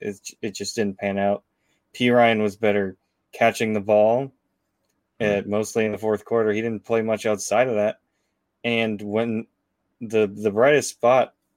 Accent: American